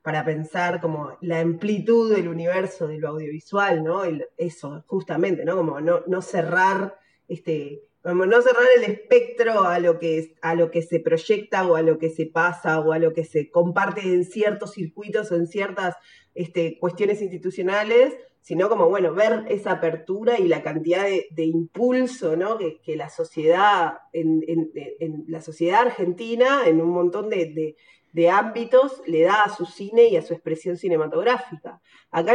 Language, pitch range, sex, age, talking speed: Spanish, 165-210 Hz, female, 20-39, 175 wpm